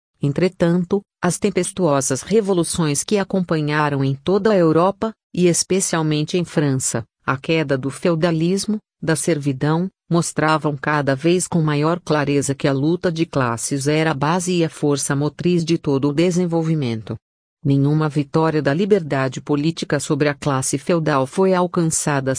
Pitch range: 145-175 Hz